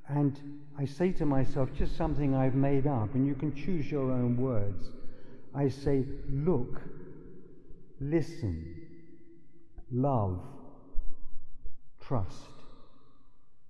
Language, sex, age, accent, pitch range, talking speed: English, male, 50-69, British, 125-145 Hz, 100 wpm